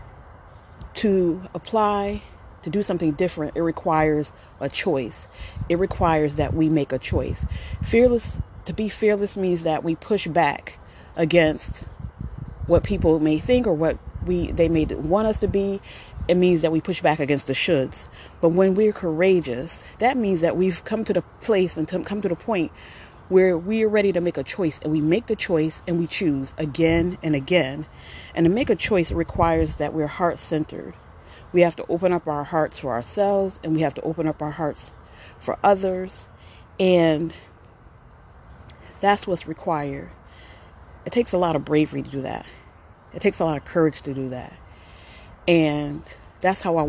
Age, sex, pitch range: 30-49, female, 140-185 Hz